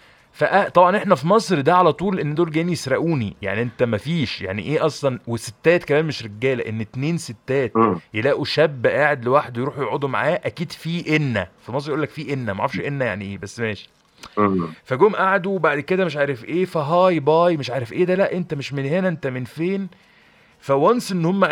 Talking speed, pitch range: 200 wpm, 125-175 Hz